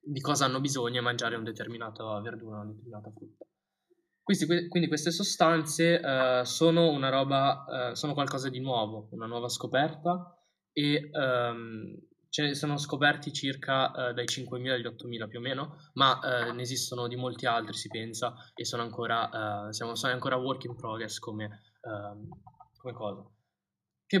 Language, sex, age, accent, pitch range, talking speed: Italian, male, 10-29, native, 115-150 Hz, 165 wpm